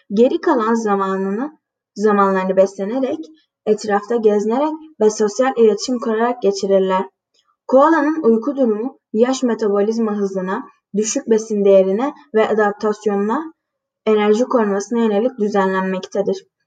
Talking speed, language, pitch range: 95 wpm, Turkish, 200-250 Hz